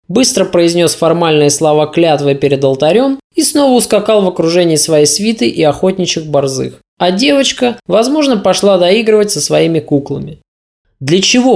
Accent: native